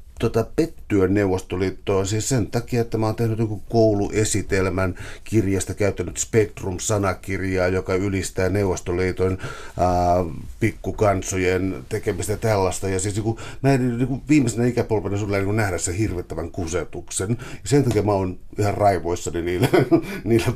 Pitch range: 90-110 Hz